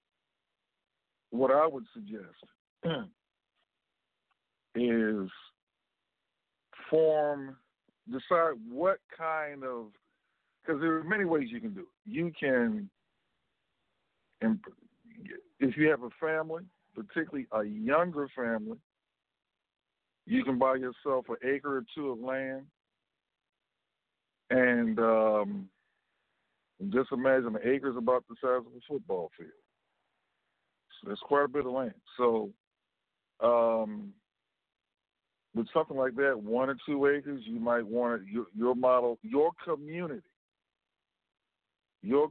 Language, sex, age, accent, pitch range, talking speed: English, male, 50-69, American, 115-150 Hz, 110 wpm